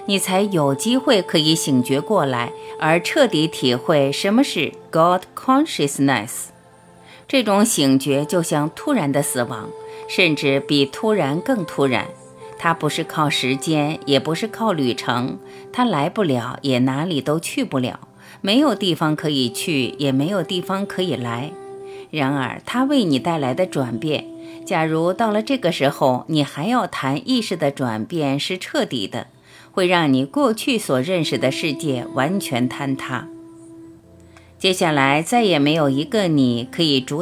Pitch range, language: 135-190 Hz, Chinese